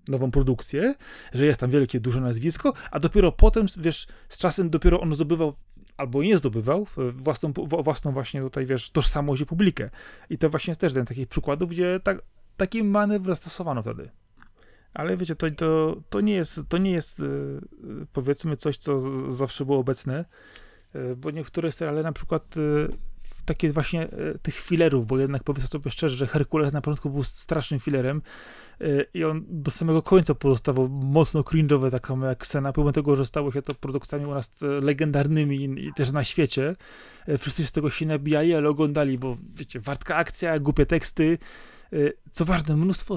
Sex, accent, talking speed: male, native, 170 wpm